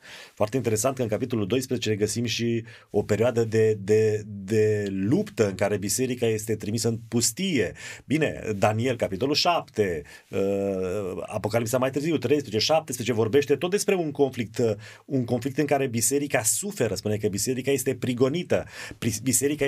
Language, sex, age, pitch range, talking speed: Romanian, male, 30-49, 115-150 Hz, 145 wpm